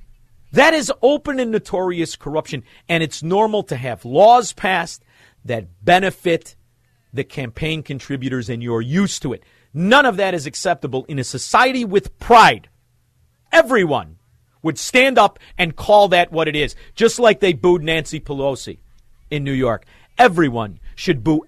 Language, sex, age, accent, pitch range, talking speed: English, male, 50-69, American, 130-195 Hz, 155 wpm